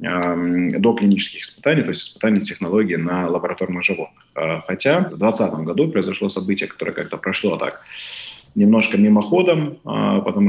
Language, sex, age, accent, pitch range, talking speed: Russian, male, 20-39, native, 95-115 Hz, 130 wpm